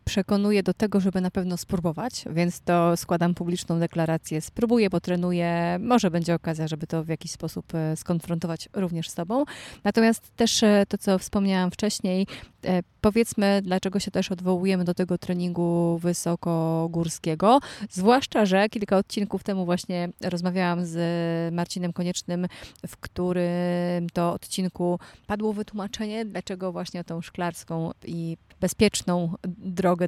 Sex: female